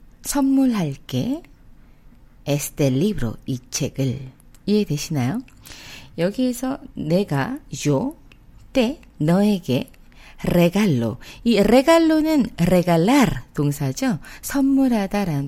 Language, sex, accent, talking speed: English, female, Korean, 65 wpm